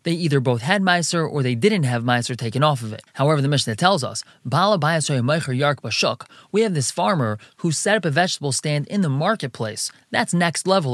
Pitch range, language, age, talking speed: 130-175 Hz, English, 20-39, 205 wpm